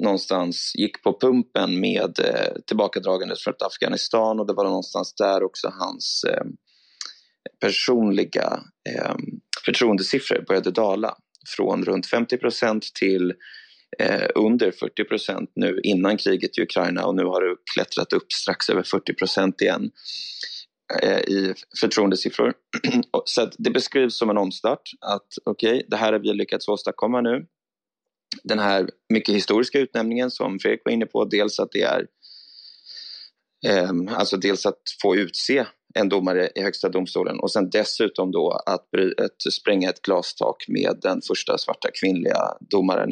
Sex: male